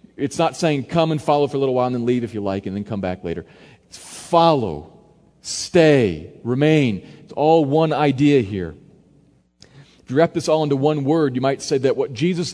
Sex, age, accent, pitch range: male, 40-59, American, 140-180 Hz